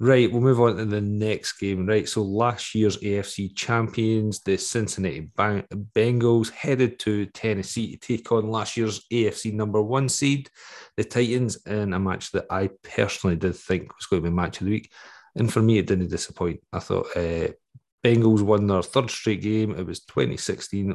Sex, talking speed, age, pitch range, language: male, 185 wpm, 40-59, 95-110 Hz, English